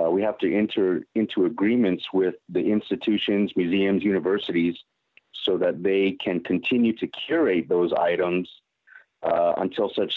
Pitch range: 85-100 Hz